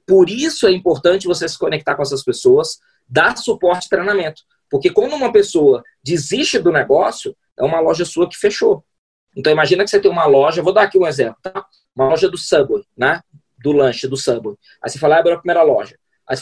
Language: Portuguese